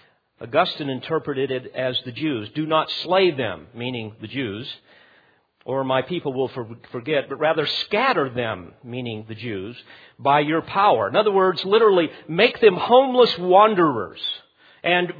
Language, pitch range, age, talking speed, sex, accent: English, 140-210 Hz, 50-69, 145 wpm, male, American